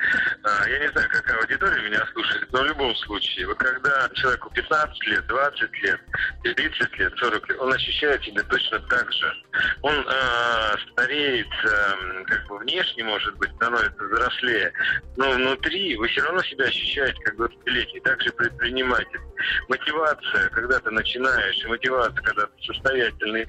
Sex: male